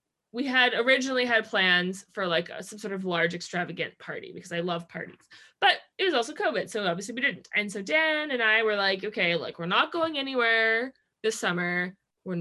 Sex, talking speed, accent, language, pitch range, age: female, 205 wpm, American, English, 195-265 Hz, 20-39